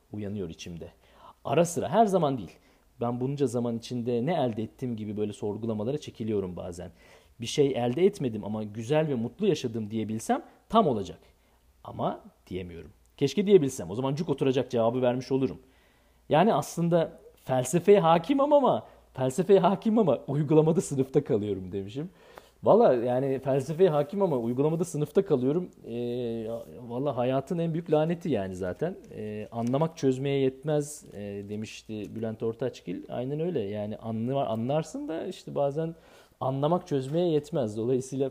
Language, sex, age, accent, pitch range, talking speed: Turkish, male, 40-59, native, 115-165 Hz, 140 wpm